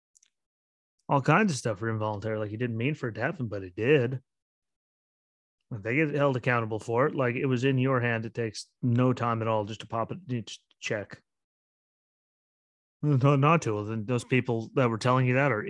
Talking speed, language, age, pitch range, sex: 200 wpm, English, 30-49, 100-130 Hz, male